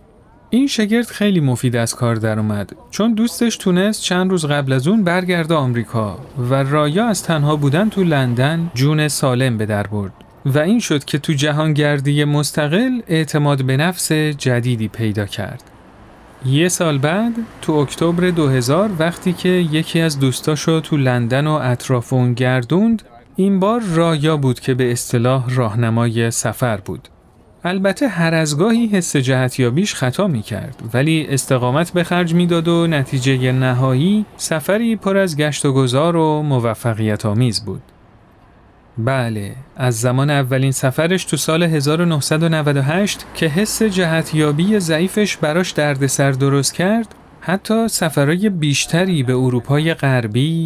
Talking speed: 140 wpm